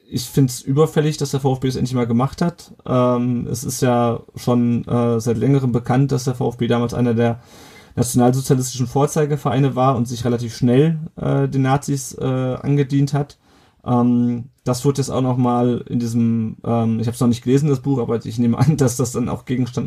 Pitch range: 120-135 Hz